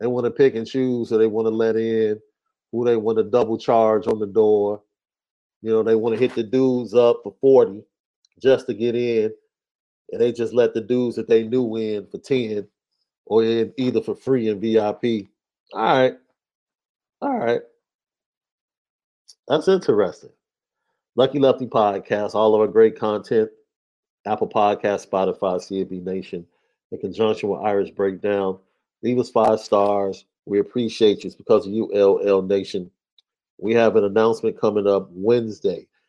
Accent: American